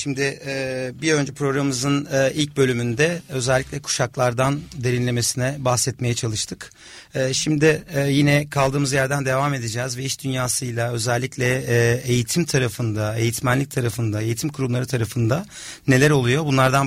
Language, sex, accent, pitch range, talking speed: Turkish, male, native, 125-155 Hz, 110 wpm